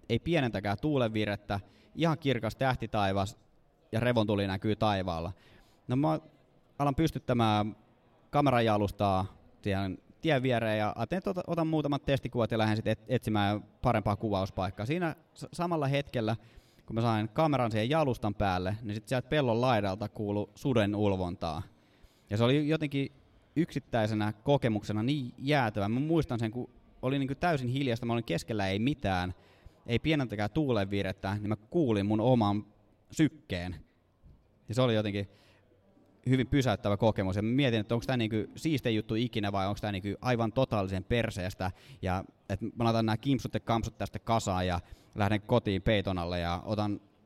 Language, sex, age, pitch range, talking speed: Finnish, male, 20-39, 100-125 Hz, 150 wpm